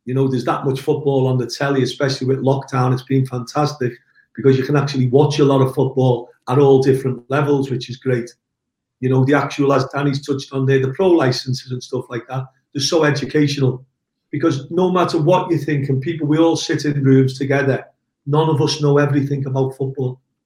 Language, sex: English, male